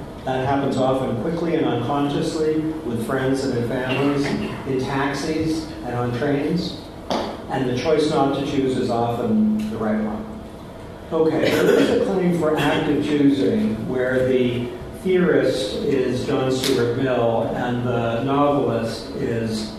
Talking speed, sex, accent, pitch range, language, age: 135 wpm, male, American, 125-145 Hz, English, 50-69